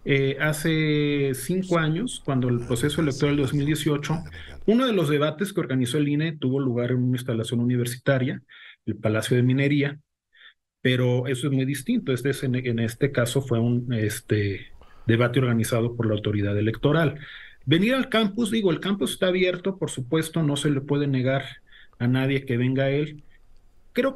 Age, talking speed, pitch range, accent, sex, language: 40-59, 175 wpm, 125-160 Hz, Mexican, male, Spanish